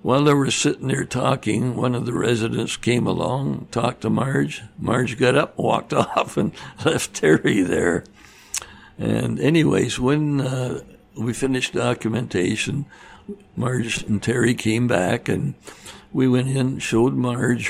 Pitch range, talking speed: 110-130 Hz, 145 wpm